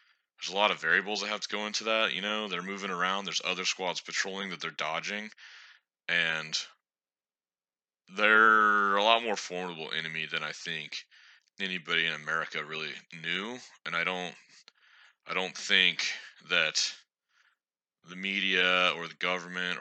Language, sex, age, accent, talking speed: English, male, 30-49, American, 150 wpm